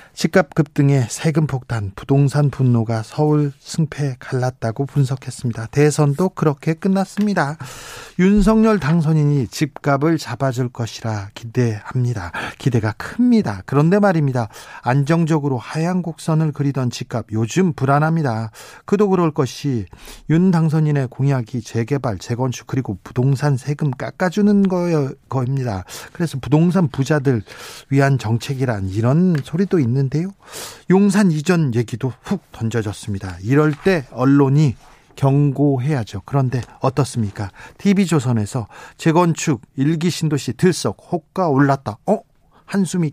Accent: native